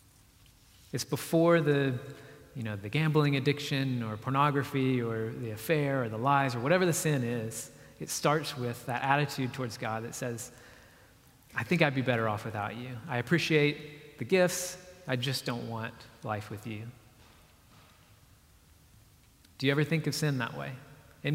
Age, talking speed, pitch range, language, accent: 30-49, 165 wpm, 120-145 Hz, English, American